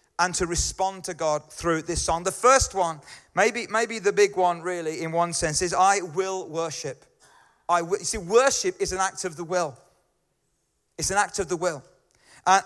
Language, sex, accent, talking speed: English, male, British, 195 wpm